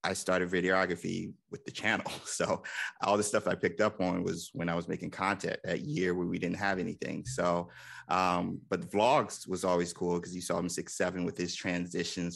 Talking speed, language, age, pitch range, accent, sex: 215 wpm, English, 30-49, 85-95 Hz, American, male